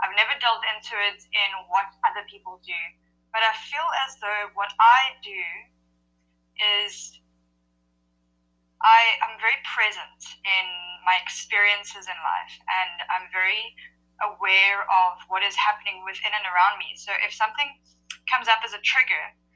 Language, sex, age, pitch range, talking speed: English, female, 10-29, 160-205 Hz, 145 wpm